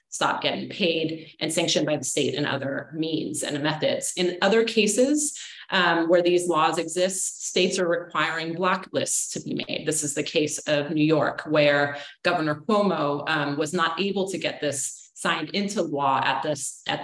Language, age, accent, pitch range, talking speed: English, 30-49, American, 155-185 Hz, 180 wpm